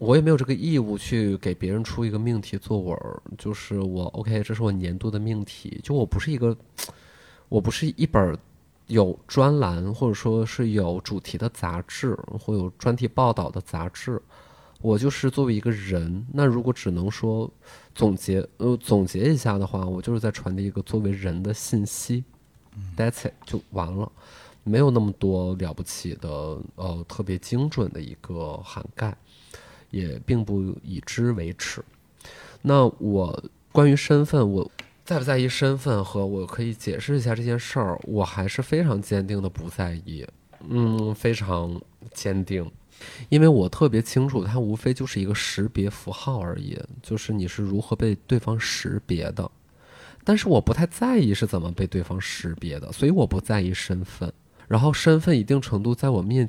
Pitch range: 95-125 Hz